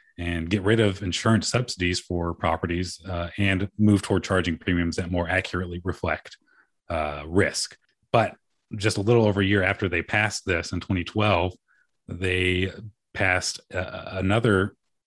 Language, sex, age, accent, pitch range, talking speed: English, male, 30-49, American, 85-100 Hz, 145 wpm